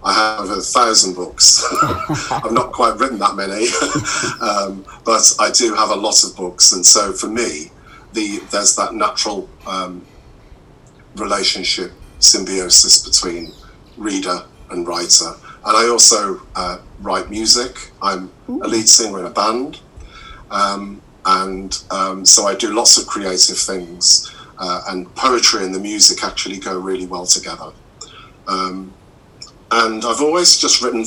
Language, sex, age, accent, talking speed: English, male, 50-69, British, 145 wpm